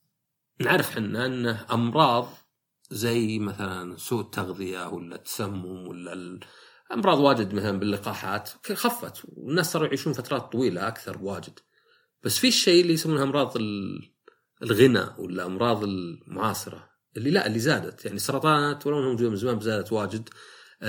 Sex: male